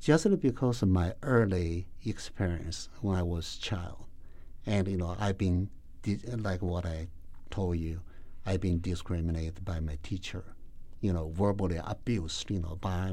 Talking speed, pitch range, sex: 155 wpm, 80-105 Hz, male